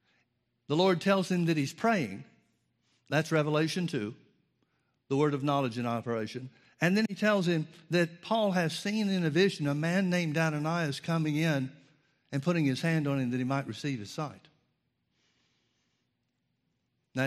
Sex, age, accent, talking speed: male, 60-79, American, 165 wpm